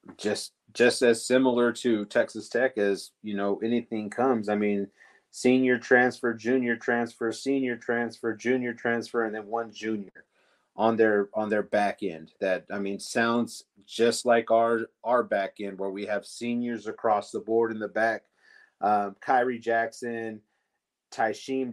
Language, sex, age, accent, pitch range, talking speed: English, male, 30-49, American, 105-120 Hz, 155 wpm